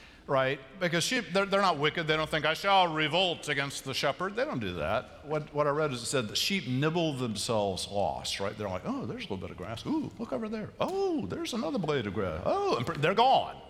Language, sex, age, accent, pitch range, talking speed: English, male, 50-69, American, 110-160 Hz, 245 wpm